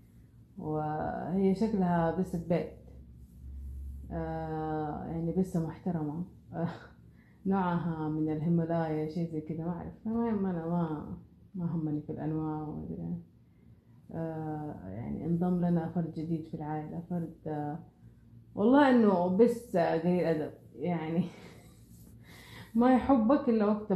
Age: 30-49